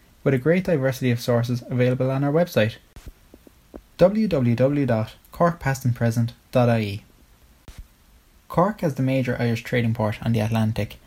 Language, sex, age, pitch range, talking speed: English, male, 20-39, 115-140 Hz, 115 wpm